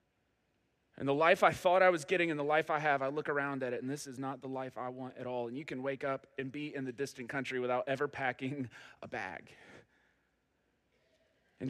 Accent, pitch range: American, 140-190 Hz